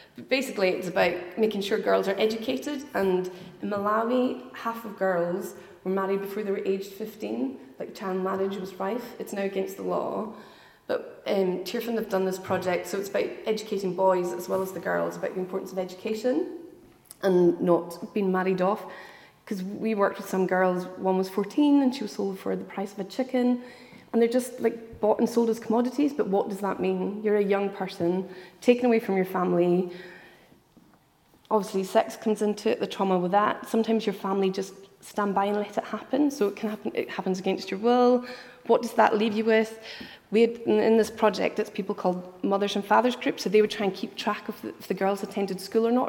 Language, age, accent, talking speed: English, 30-49, Irish, 210 wpm